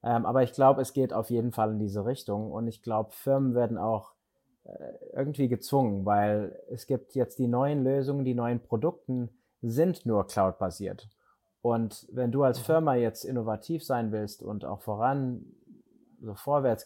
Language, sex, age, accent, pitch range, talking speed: German, male, 20-39, German, 105-125 Hz, 170 wpm